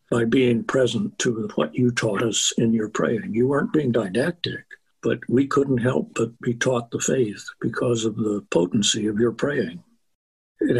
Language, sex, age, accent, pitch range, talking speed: English, male, 60-79, American, 115-130 Hz, 180 wpm